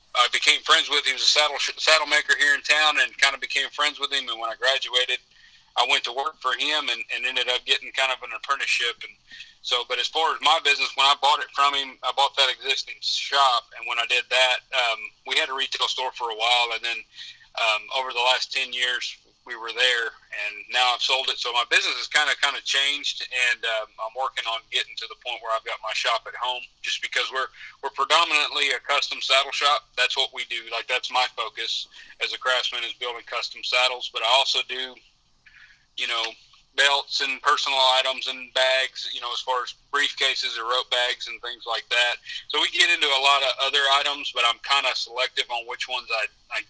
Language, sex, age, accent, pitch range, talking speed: English, male, 40-59, American, 120-140 Hz, 235 wpm